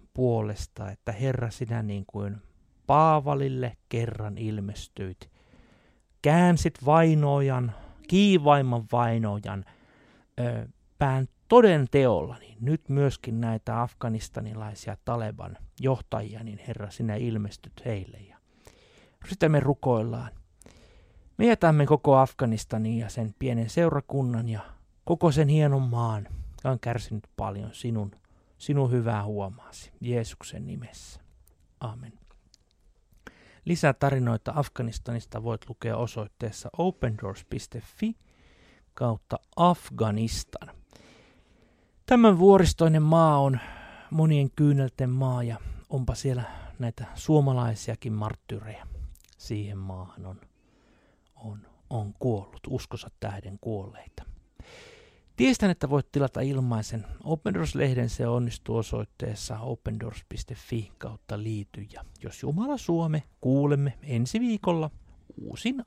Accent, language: native, Finnish